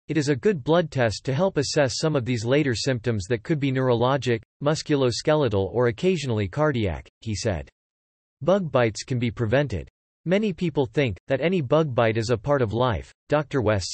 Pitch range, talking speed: 110-155 Hz, 185 wpm